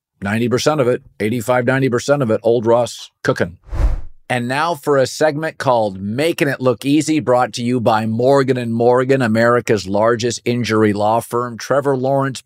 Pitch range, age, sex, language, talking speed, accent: 105-130 Hz, 50-69, male, English, 155 wpm, American